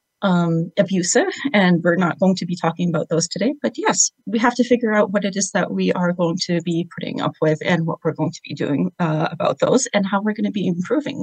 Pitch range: 175-255 Hz